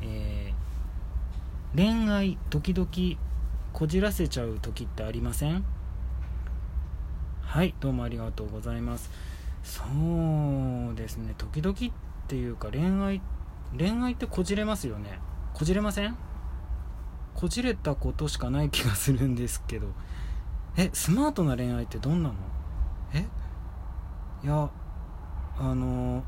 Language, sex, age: Japanese, male, 20-39